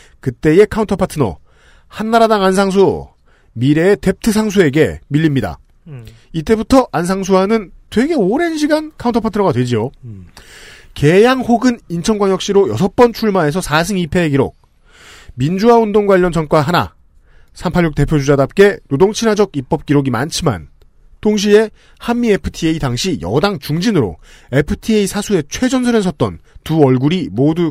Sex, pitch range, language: male, 135-205 Hz, Korean